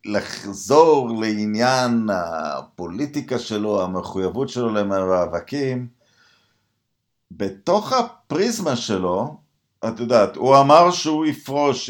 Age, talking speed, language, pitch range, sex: 50-69, 80 wpm, Hebrew, 95-120 Hz, male